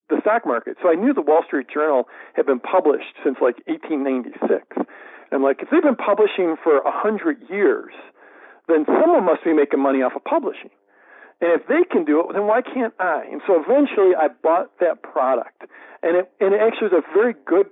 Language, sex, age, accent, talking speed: English, male, 50-69, American, 215 wpm